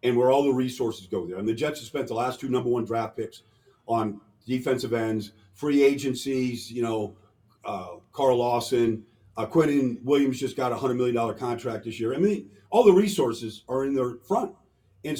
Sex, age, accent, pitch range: male, 50-69, American, 120-180 Hz